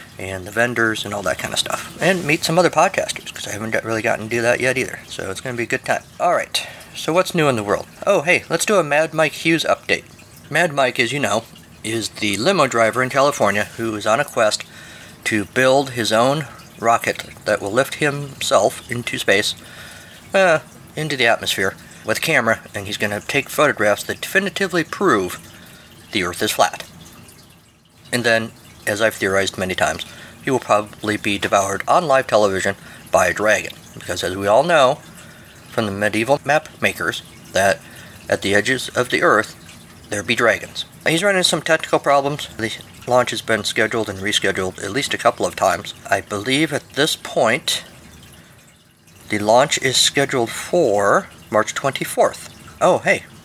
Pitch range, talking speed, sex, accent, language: 105-140 Hz, 185 wpm, male, American, English